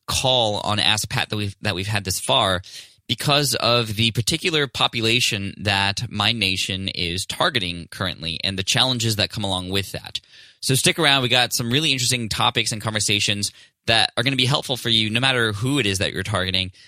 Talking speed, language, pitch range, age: 205 wpm, English, 95-125 Hz, 10-29